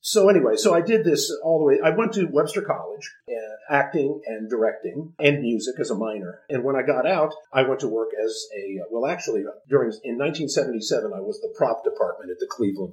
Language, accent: English, American